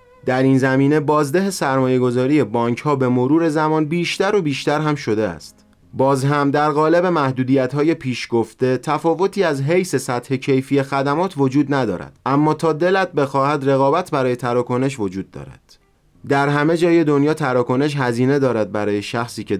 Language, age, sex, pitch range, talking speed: Persian, 30-49, male, 125-160 Hz, 160 wpm